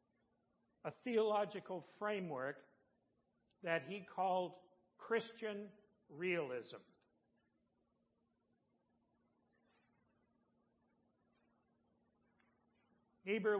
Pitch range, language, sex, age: 170-210 Hz, English, male, 60-79